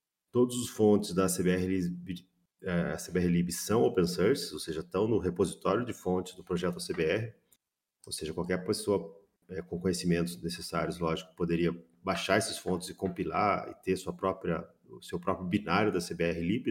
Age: 40-59